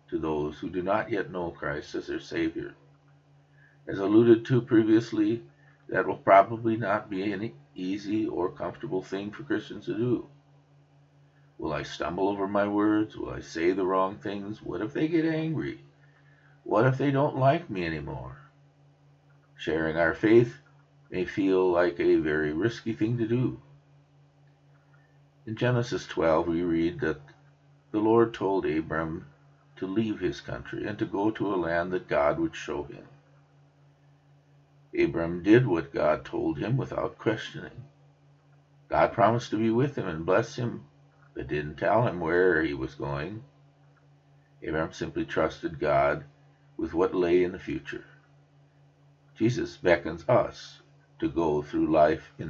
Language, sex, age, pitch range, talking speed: English, male, 50-69, 110-145 Hz, 150 wpm